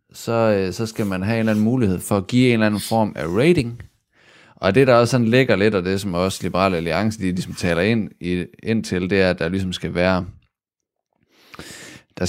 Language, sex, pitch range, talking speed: Danish, male, 90-110 Hz, 245 wpm